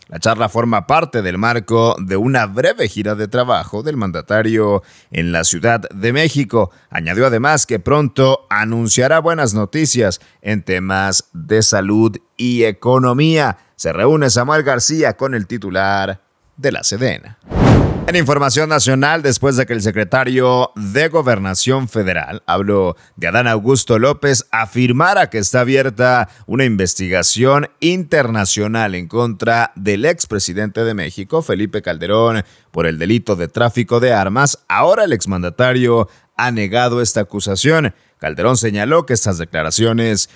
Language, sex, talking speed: Spanish, male, 135 wpm